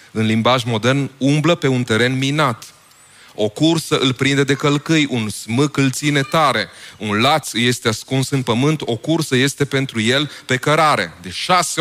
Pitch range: 120-150 Hz